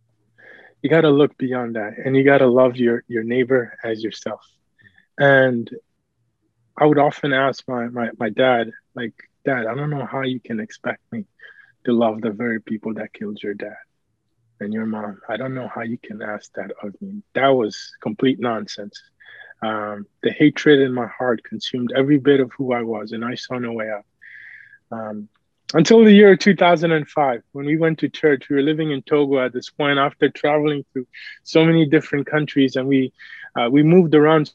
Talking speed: 190 wpm